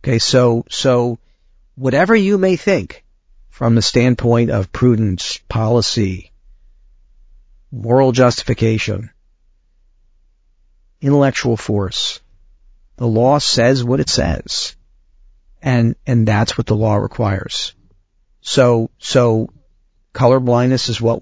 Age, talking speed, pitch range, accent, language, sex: 50-69, 100 wpm, 100-125 Hz, American, English, male